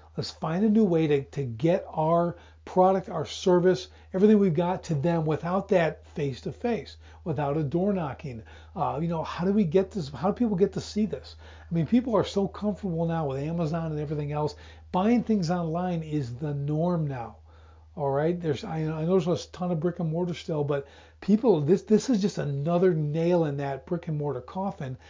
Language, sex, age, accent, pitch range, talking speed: English, male, 40-59, American, 140-195 Hz, 205 wpm